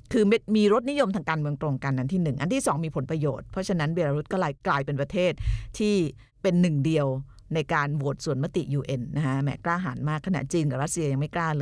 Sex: female